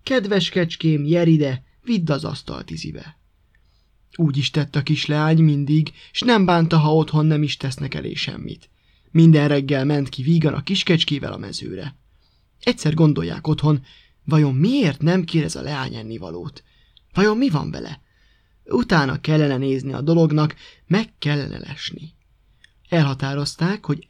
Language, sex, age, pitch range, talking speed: Hungarian, male, 20-39, 135-165 Hz, 145 wpm